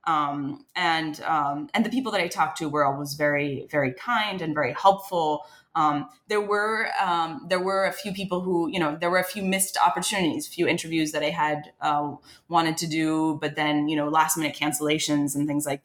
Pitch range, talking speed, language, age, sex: 150-175 Hz, 210 wpm, English, 20-39, female